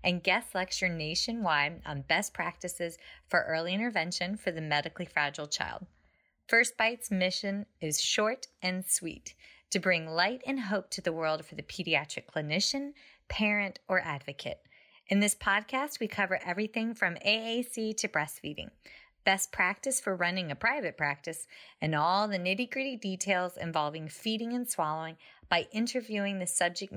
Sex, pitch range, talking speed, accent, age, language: female, 175-225 Hz, 150 wpm, American, 30-49, English